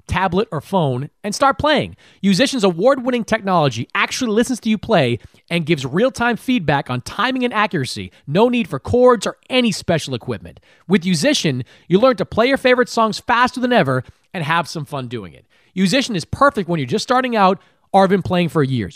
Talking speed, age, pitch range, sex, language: 195 wpm, 30-49, 150-235 Hz, male, English